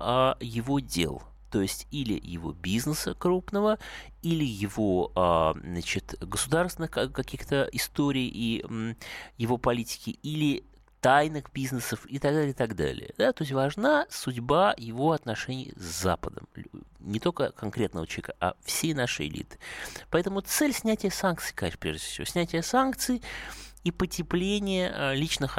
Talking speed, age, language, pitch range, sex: 120 wpm, 30-49, Russian, 100-160 Hz, male